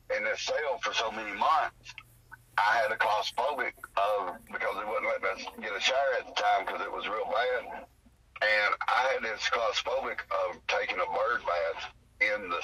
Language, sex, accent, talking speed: English, male, American, 190 wpm